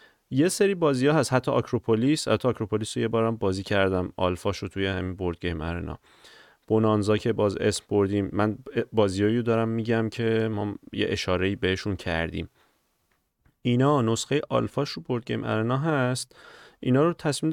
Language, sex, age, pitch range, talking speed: Persian, male, 30-49, 95-130 Hz, 150 wpm